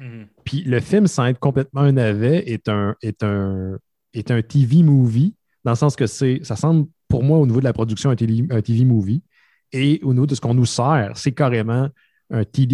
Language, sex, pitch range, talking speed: French, male, 110-145 Hz, 200 wpm